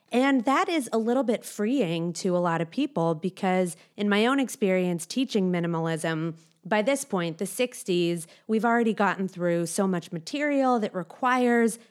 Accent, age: American, 30-49